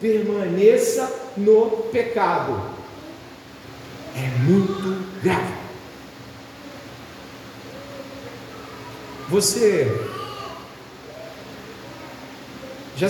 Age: 40-59